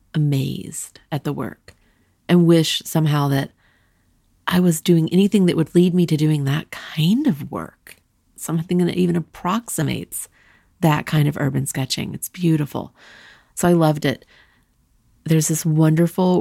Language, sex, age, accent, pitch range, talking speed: English, female, 40-59, American, 140-175 Hz, 145 wpm